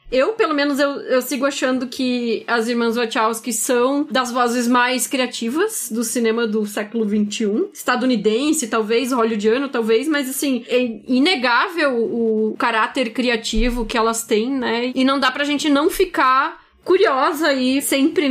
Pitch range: 235-290 Hz